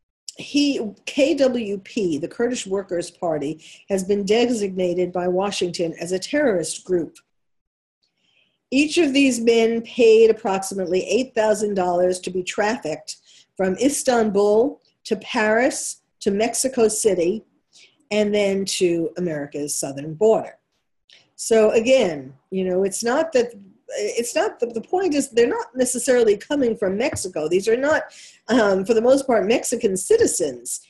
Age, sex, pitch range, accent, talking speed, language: 50-69, female, 190-250 Hz, American, 130 wpm, English